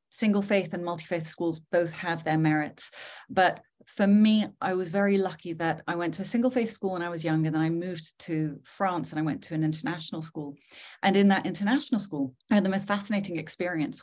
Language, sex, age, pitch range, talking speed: English, female, 30-49, 165-205 Hz, 210 wpm